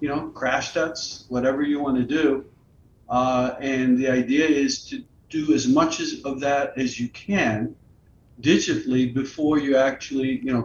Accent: American